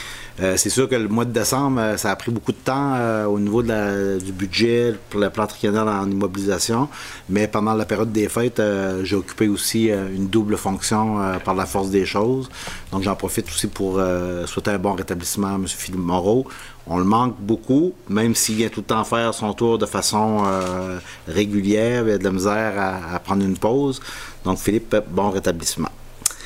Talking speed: 215 wpm